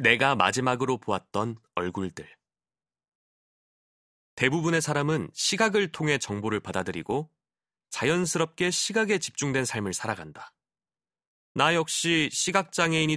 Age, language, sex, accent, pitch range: 30-49, Korean, male, native, 105-160 Hz